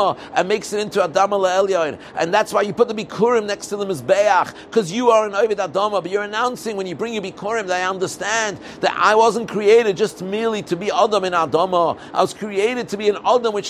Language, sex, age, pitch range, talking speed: English, male, 50-69, 190-230 Hz, 230 wpm